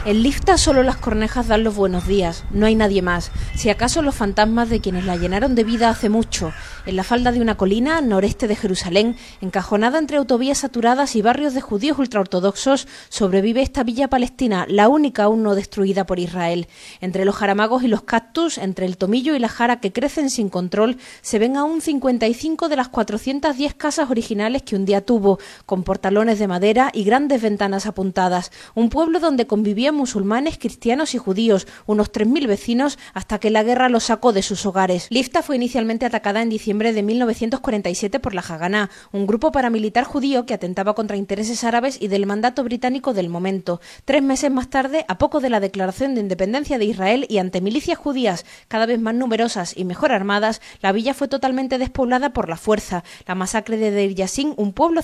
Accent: Spanish